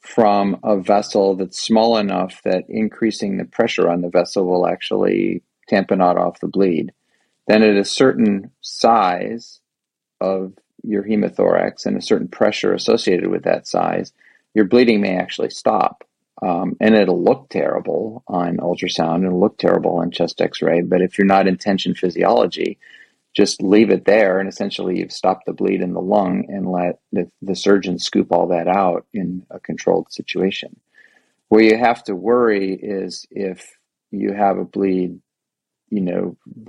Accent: American